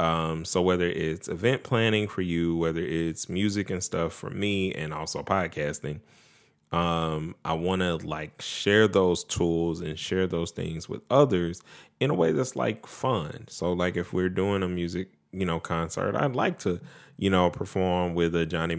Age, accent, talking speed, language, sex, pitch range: 10-29, American, 180 wpm, English, male, 80-95 Hz